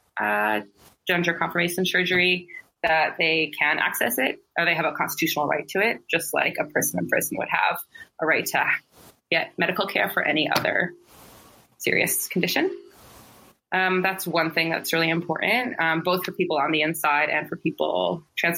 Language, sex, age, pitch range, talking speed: English, female, 20-39, 160-185 Hz, 175 wpm